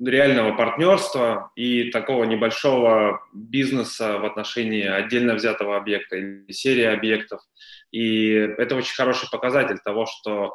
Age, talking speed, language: 20-39, 120 wpm, Russian